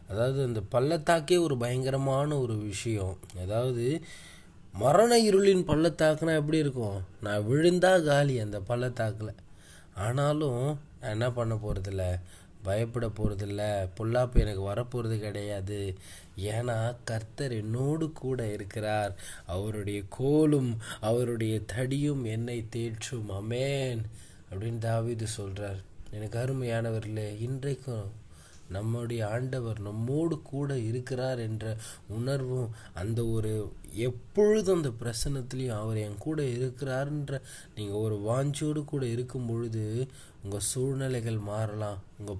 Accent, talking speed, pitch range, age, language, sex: native, 105 wpm, 105-135 Hz, 20-39, Tamil, male